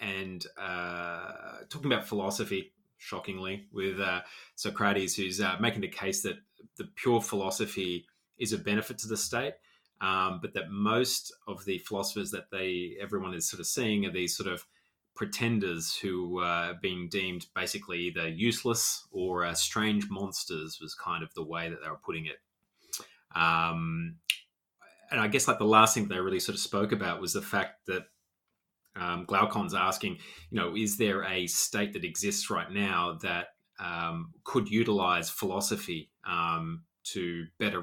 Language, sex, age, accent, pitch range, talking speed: English, male, 20-39, Australian, 85-105 Hz, 165 wpm